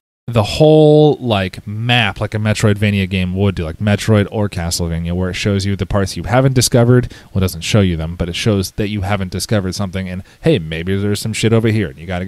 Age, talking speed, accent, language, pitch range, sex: 30-49, 240 wpm, American, English, 95-125 Hz, male